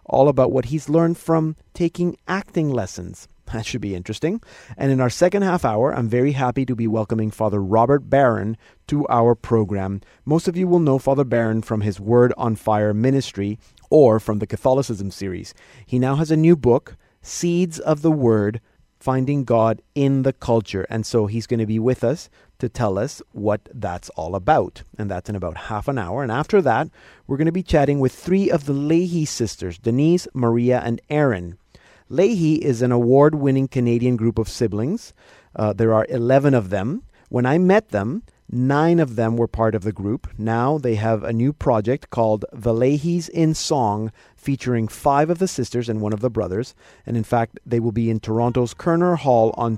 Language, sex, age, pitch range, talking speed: English, male, 30-49, 110-145 Hz, 195 wpm